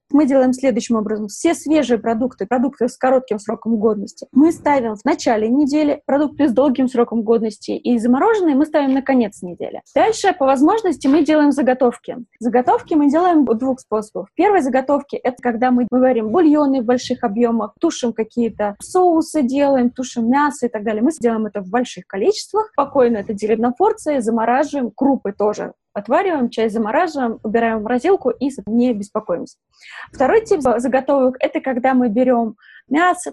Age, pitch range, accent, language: 20-39, 230-295 Hz, native, Russian